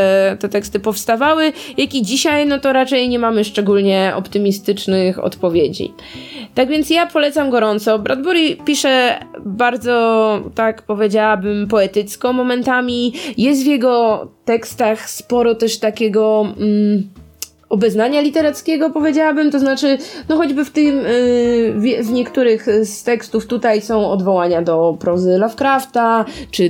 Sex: female